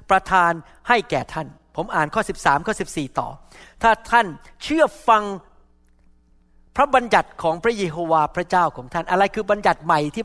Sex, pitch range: male, 175-250 Hz